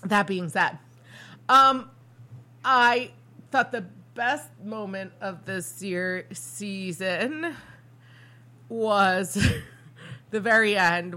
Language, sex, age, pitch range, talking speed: English, female, 30-49, 170-245 Hz, 90 wpm